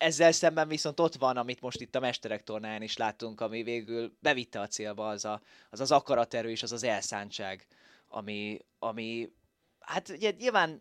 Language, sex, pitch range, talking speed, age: Hungarian, male, 110-145 Hz, 180 wpm, 20-39